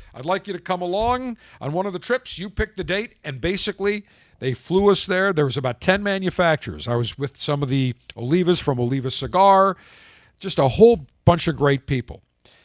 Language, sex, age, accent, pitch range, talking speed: English, male, 50-69, American, 120-180 Hz, 205 wpm